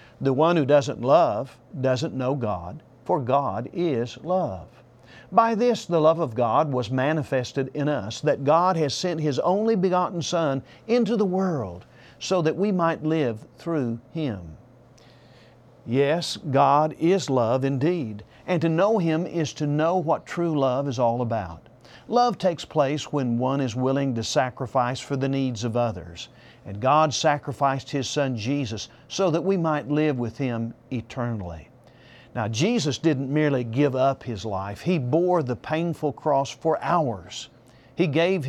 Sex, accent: male, American